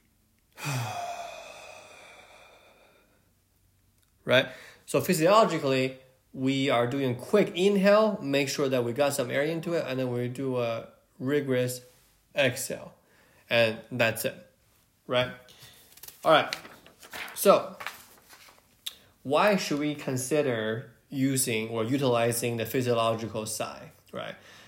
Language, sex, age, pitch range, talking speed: English, male, 20-39, 120-150 Hz, 100 wpm